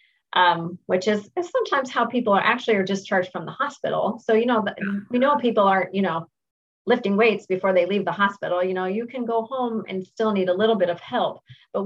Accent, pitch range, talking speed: American, 180-220 Hz, 235 wpm